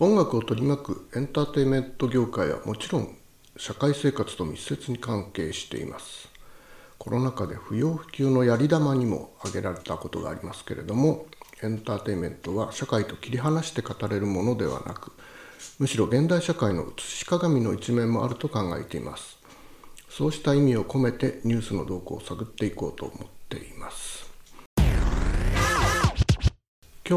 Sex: male